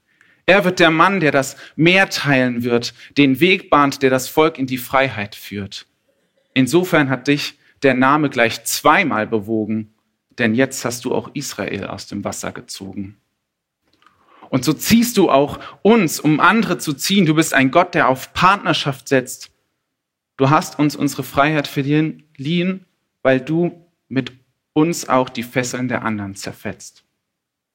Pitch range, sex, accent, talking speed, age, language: 115-155 Hz, male, German, 155 wpm, 40-59, German